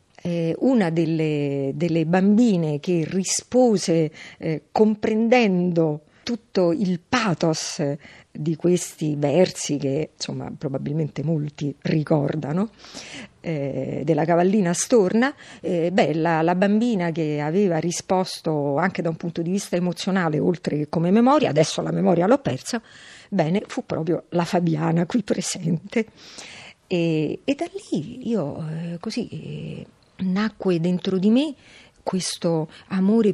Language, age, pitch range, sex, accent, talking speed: Italian, 50-69, 155-195 Hz, female, native, 120 wpm